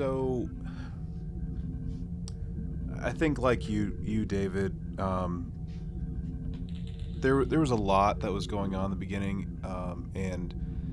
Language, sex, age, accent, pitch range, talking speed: English, male, 30-49, American, 85-110 Hz, 120 wpm